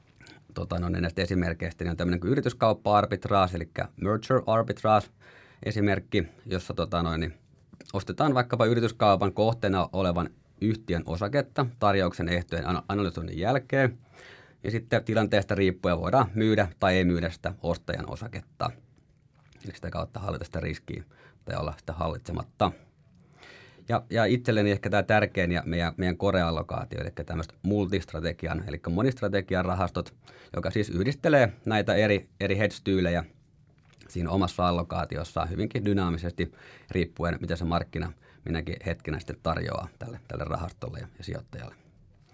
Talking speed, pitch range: 125 wpm, 85-115 Hz